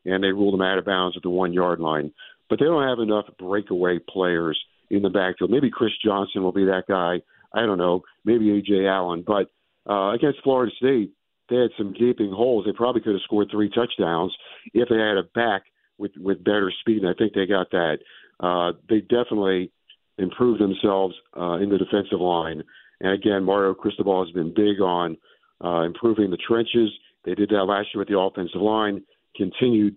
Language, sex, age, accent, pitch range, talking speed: English, male, 50-69, American, 95-110 Hz, 195 wpm